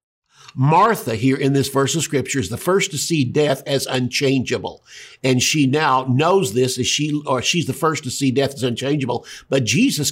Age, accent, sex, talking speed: 50-69, American, male, 195 wpm